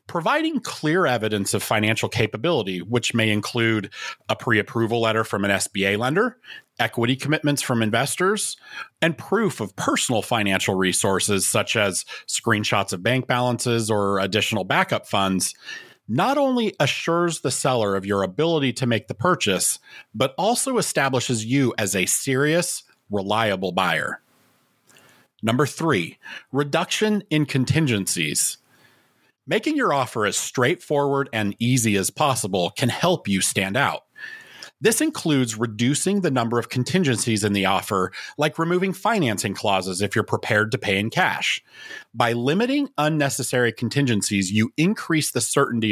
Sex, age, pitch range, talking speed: male, 40-59, 105-150 Hz, 135 wpm